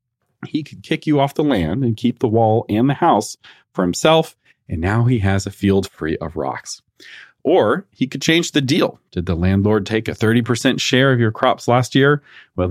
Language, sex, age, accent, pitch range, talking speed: English, male, 40-59, American, 90-120 Hz, 210 wpm